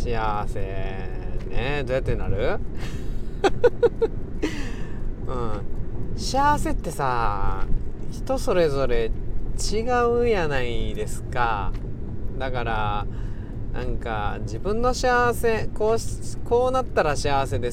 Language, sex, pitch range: Japanese, male, 105-155 Hz